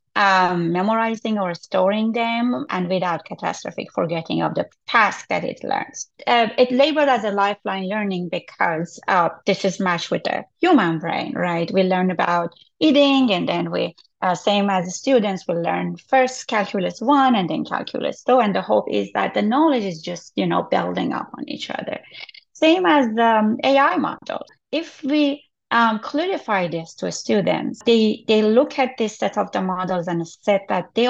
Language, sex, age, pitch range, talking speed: English, female, 30-49, 185-255 Hz, 180 wpm